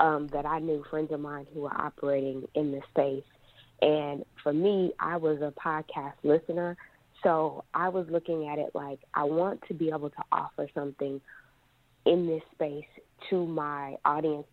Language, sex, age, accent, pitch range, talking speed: English, female, 30-49, American, 140-155 Hz, 175 wpm